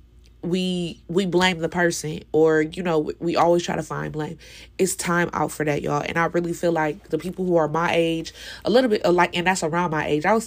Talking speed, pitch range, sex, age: 240 wpm, 155-180 Hz, female, 20-39